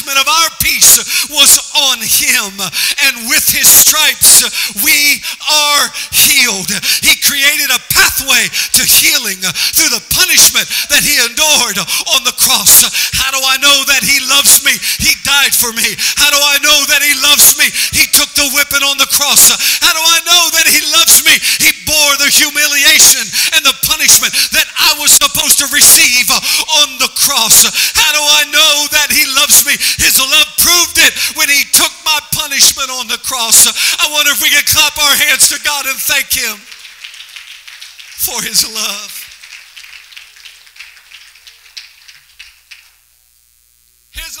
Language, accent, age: English, American, 40-59